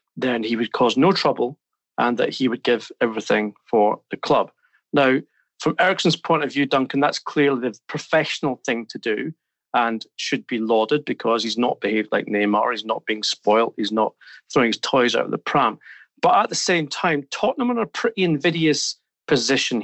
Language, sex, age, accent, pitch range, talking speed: English, male, 40-59, British, 115-165 Hz, 195 wpm